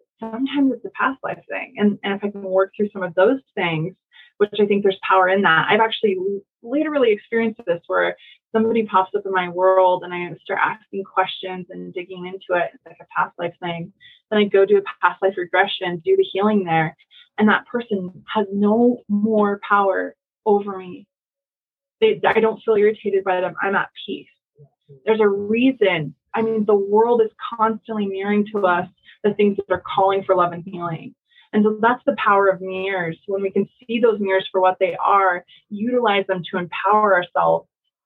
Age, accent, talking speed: 20-39, American, 195 wpm